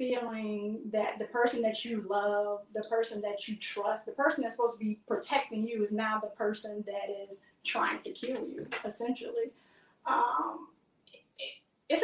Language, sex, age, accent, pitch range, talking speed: English, female, 30-49, American, 220-270 Hz, 165 wpm